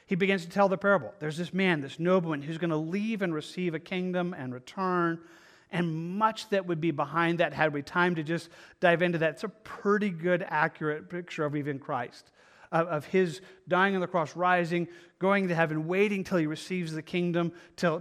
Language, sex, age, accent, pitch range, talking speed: English, male, 40-59, American, 160-185 Hz, 210 wpm